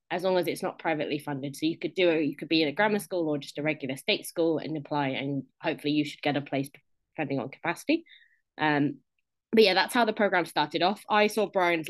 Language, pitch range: English, 160-215 Hz